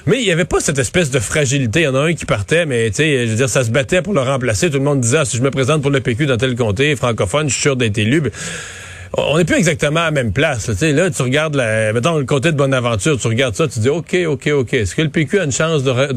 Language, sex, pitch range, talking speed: French, male, 130-170 Hz, 310 wpm